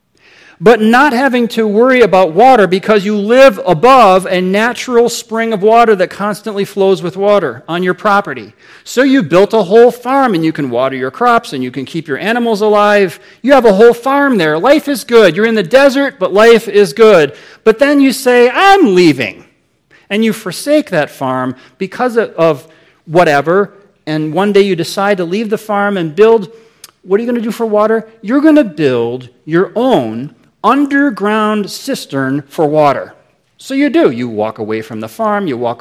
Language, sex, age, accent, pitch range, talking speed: English, male, 40-59, American, 150-225 Hz, 190 wpm